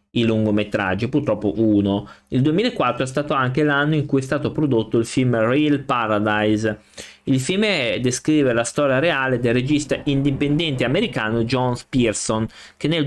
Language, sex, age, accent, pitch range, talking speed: Italian, male, 20-39, native, 115-145 Hz, 150 wpm